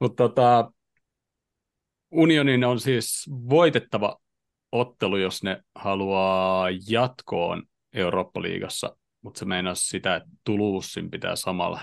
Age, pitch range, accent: 30-49, 95-120 Hz, native